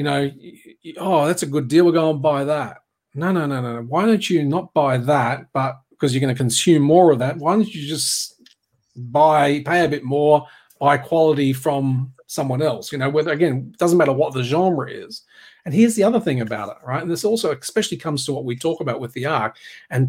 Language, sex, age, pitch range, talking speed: English, male, 40-59, 125-165 Hz, 230 wpm